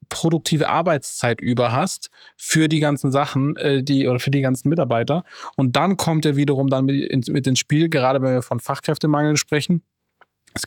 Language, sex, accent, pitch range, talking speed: German, male, German, 130-150 Hz, 175 wpm